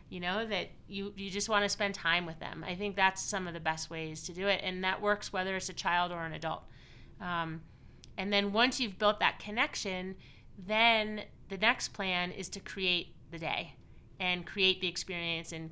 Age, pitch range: 30-49, 165-195 Hz